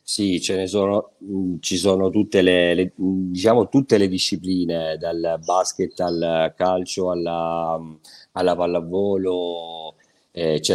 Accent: native